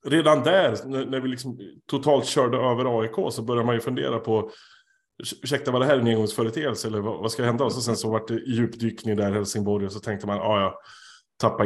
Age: 30-49